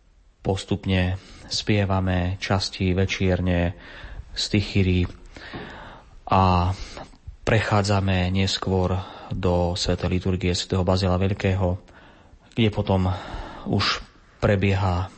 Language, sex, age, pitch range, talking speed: Slovak, male, 30-49, 90-100 Hz, 75 wpm